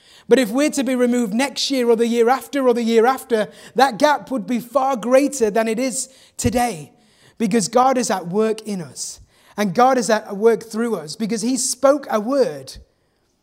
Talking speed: 200 wpm